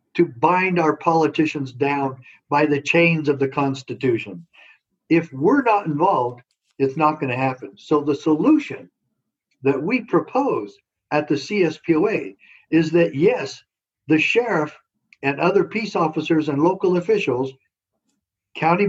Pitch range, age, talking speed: 140-180 Hz, 60-79, 130 wpm